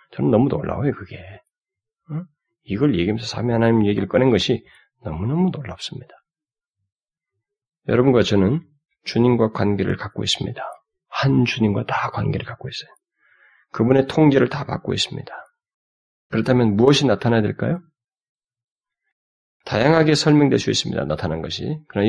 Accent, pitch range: native, 105-150 Hz